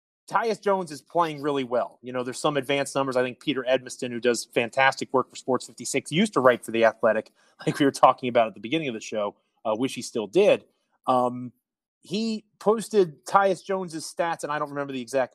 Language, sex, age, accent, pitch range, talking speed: English, male, 30-49, American, 125-160 Hz, 225 wpm